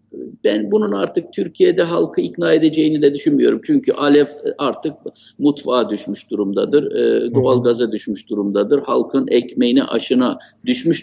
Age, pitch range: 50-69, 120-195 Hz